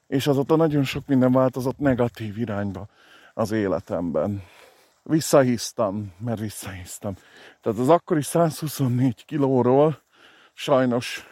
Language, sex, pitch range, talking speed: Hungarian, male, 115-145 Hz, 100 wpm